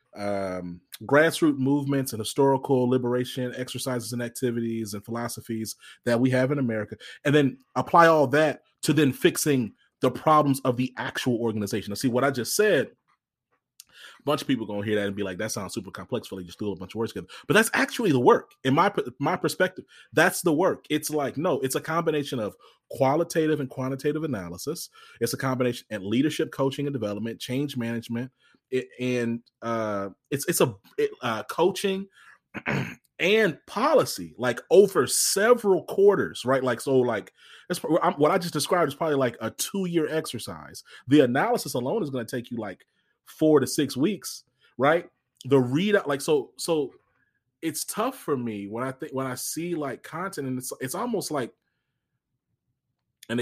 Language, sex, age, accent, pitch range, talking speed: English, male, 30-49, American, 115-150 Hz, 175 wpm